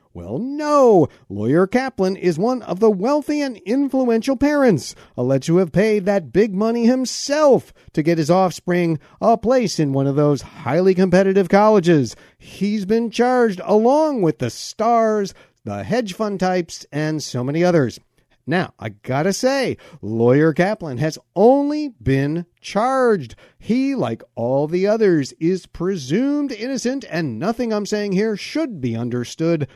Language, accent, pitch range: English, American, 150-230 Hz